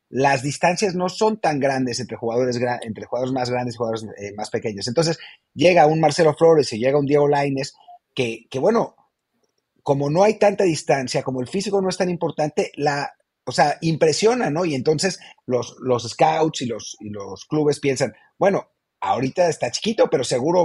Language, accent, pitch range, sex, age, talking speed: English, Mexican, 125-180 Hz, male, 30-49, 185 wpm